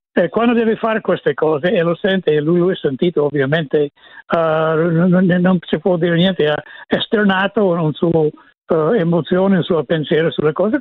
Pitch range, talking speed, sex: 160-195 Hz, 165 wpm, male